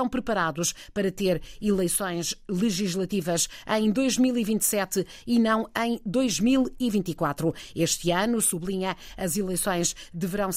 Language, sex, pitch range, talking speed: Portuguese, female, 175-210 Hz, 95 wpm